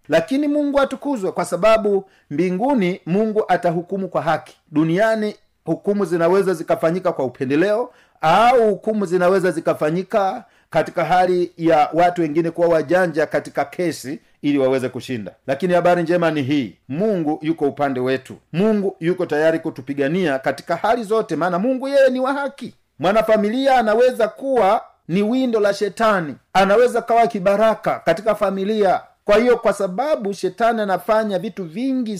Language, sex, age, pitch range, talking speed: Swahili, male, 50-69, 165-220 Hz, 140 wpm